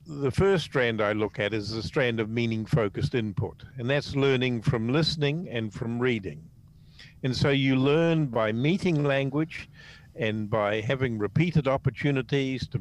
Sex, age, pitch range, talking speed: male, 50-69, 110-140 Hz, 160 wpm